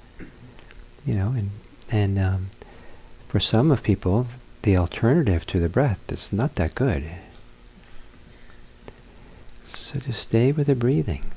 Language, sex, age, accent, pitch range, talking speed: English, male, 50-69, American, 90-120 Hz, 125 wpm